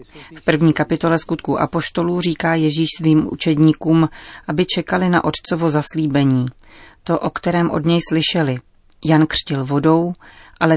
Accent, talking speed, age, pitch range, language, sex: native, 135 wpm, 40-59, 140-170 Hz, Czech, female